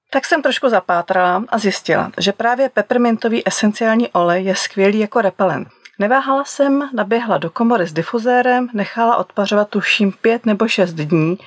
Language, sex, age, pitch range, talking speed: Czech, female, 30-49, 185-230 Hz, 150 wpm